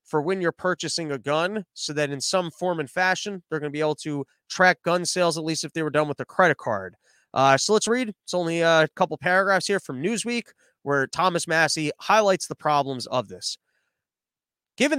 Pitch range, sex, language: 145-185 Hz, male, English